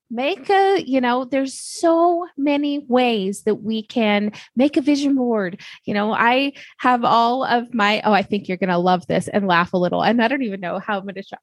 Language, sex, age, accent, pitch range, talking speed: English, female, 20-39, American, 195-250 Hz, 220 wpm